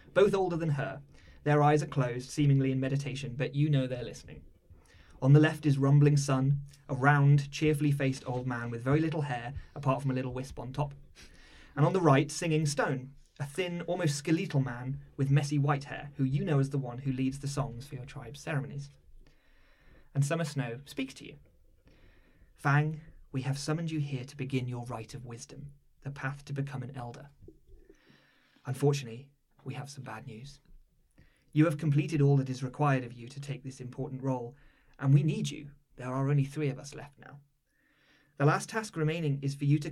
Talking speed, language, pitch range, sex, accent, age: 200 wpm, English, 130-145 Hz, male, British, 30-49